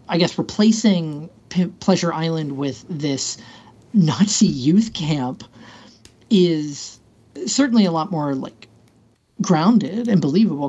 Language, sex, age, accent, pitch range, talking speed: English, male, 40-59, American, 140-190 Hz, 105 wpm